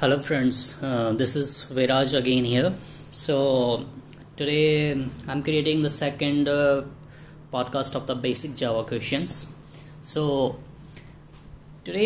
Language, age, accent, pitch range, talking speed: English, 20-39, Indian, 125-150 Hz, 120 wpm